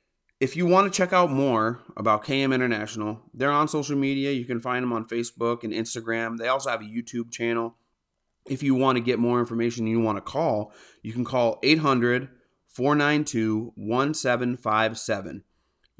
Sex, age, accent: male, 30-49, American